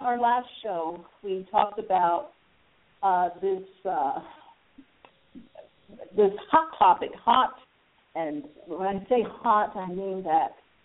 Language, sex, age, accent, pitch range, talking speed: English, female, 50-69, American, 170-225 Hz, 115 wpm